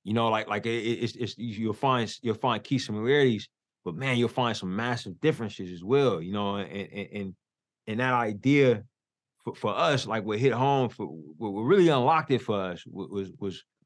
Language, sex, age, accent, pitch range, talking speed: English, male, 20-39, American, 105-130 Hz, 205 wpm